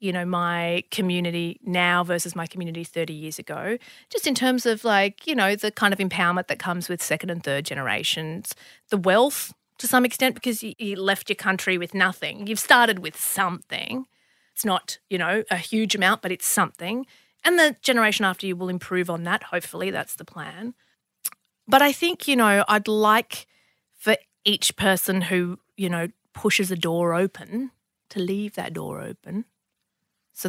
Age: 30-49